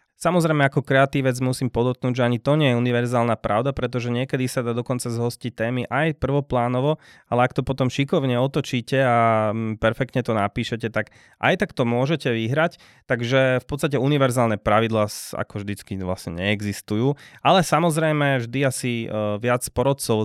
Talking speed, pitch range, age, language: 155 wpm, 115-140 Hz, 20-39, Slovak